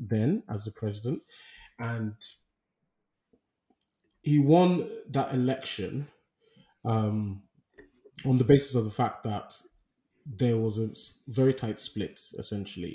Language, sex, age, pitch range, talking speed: English, male, 20-39, 105-125 Hz, 110 wpm